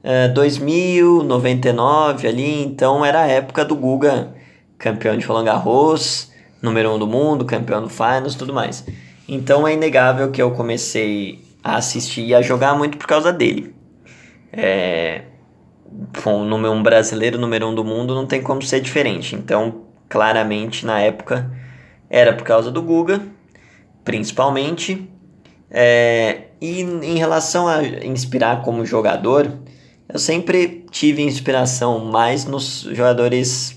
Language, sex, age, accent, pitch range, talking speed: Portuguese, male, 20-39, Brazilian, 110-145 Hz, 135 wpm